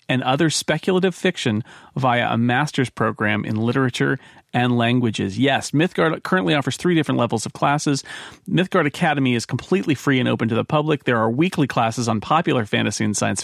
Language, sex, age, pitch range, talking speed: English, male, 40-59, 120-145 Hz, 180 wpm